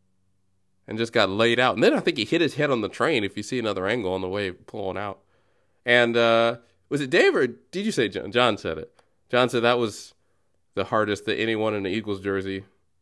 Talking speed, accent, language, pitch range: 235 wpm, American, English, 95-140 Hz